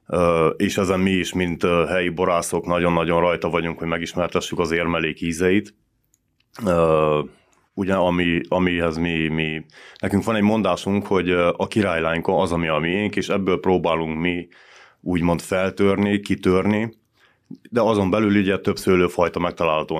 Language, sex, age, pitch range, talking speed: Hungarian, male, 30-49, 85-105 Hz, 140 wpm